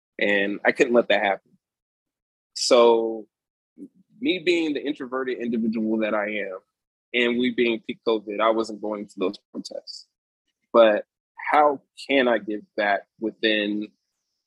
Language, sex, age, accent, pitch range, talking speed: English, male, 20-39, American, 110-120 Hz, 135 wpm